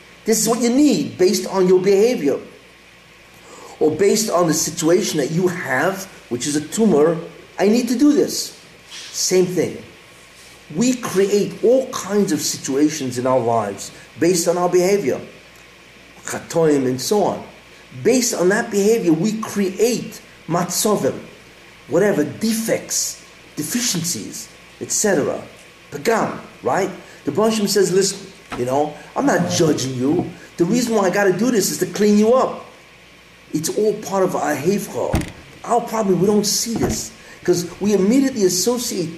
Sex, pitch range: male, 180-230 Hz